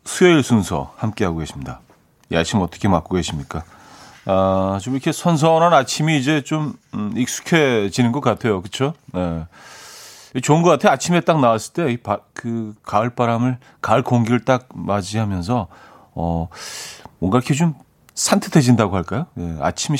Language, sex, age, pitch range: Korean, male, 40-59, 95-135 Hz